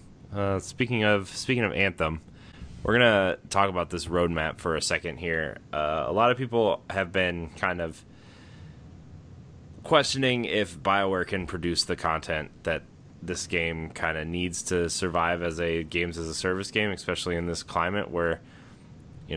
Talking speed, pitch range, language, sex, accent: 165 wpm, 85-100 Hz, English, male, American